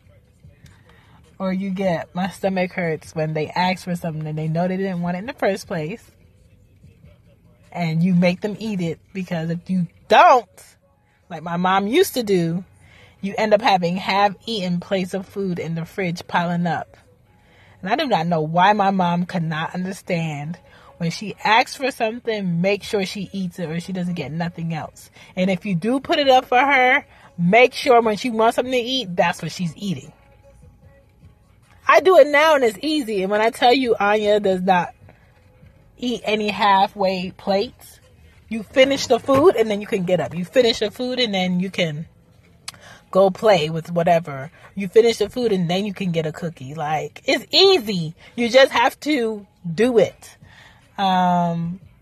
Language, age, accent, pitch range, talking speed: English, 30-49, American, 170-210 Hz, 185 wpm